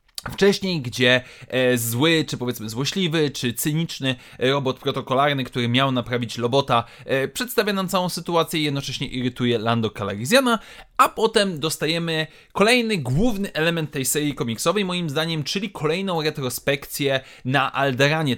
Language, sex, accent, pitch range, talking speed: Polish, male, native, 135-175 Hz, 125 wpm